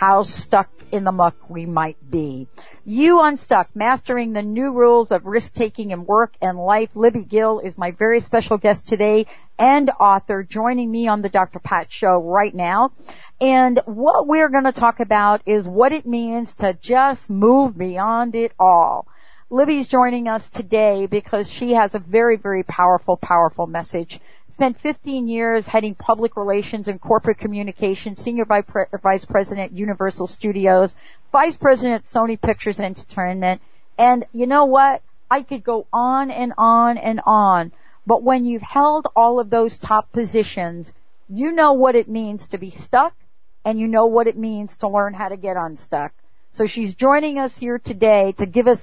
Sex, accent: female, American